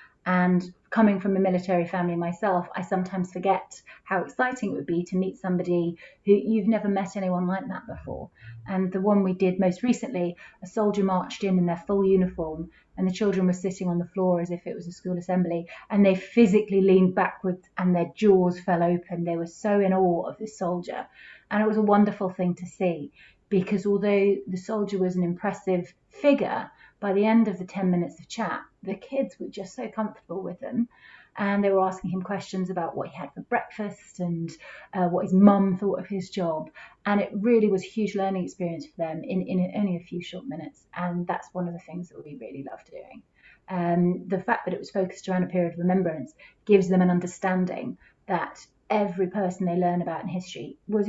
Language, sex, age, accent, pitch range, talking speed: English, female, 30-49, British, 180-200 Hz, 215 wpm